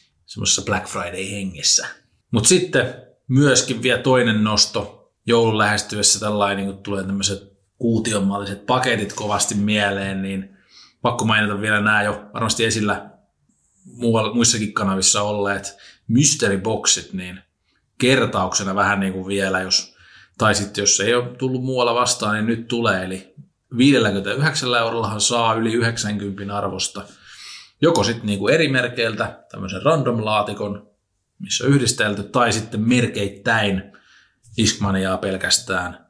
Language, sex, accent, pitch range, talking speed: Finnish, male, native, 95-115 Hz, 125 wpm